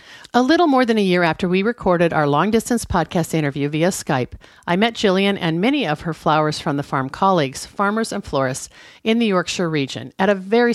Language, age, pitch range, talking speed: English, 50-69, 145-205 Hz, 205 wpm